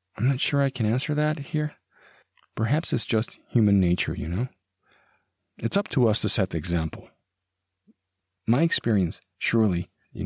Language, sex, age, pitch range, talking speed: English, male, 40-59, 95-125 Hz, 160 wpm